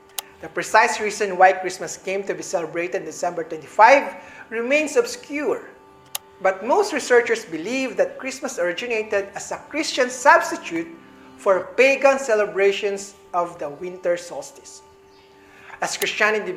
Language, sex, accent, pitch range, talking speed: English, male, Filipino, 180-265 Hz, 125 wpm